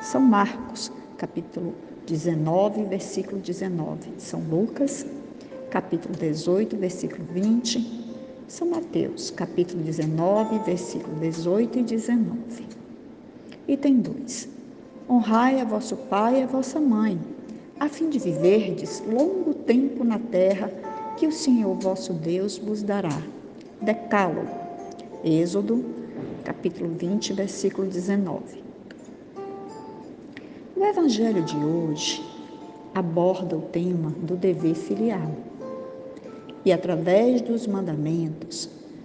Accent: Brazilian